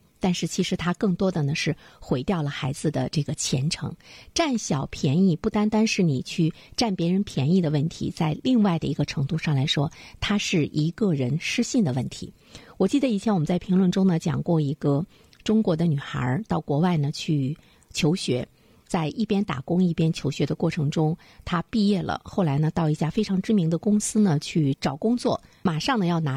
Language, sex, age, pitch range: Chinese, female, 50-69, 150-195 Hz